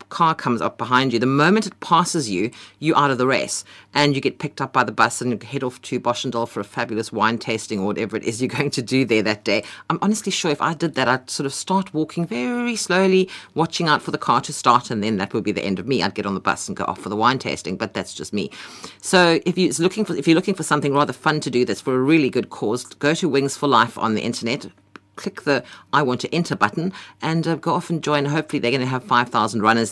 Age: 50-69